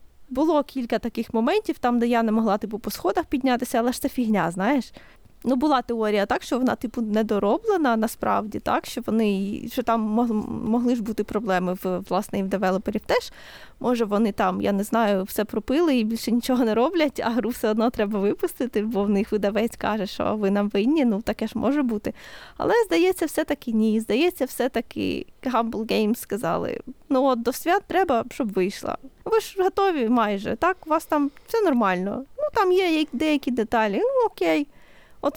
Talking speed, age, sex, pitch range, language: 180 wpm, 20-39, female, 215-290 Hz, Ukrainian